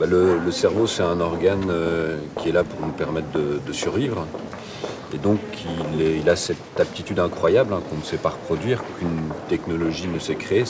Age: 40-59